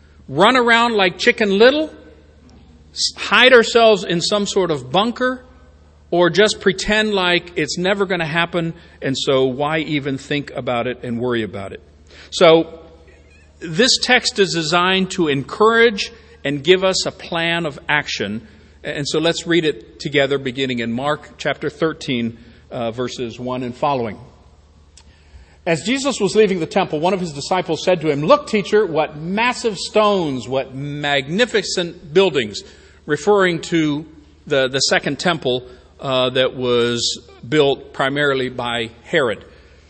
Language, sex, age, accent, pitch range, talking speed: English, male, 50-69, American, 125-185 Hz, 145 wpm